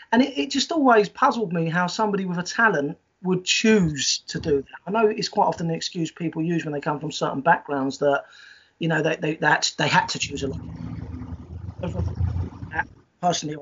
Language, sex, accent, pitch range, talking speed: English, male, British, 145-195 Hz, 200 wpm